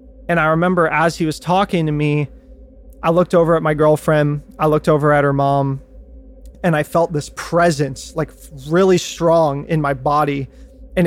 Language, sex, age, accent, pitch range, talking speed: English, male, 30-49, American, 145-170 Hz, 180 wpm